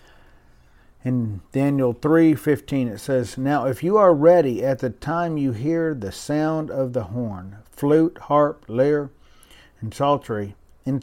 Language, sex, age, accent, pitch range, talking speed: English, male, 50-69, American, 120-160 Hz, 140 wpm